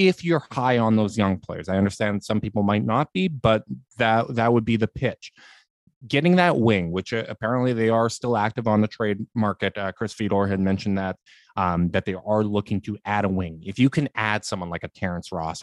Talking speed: 225 wpm